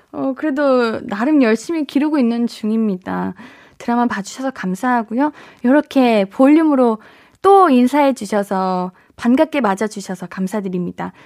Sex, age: female, 20-39